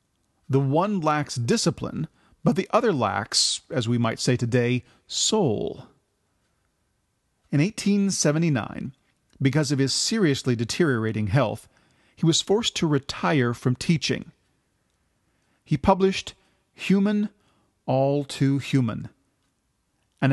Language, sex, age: English, male, 40-59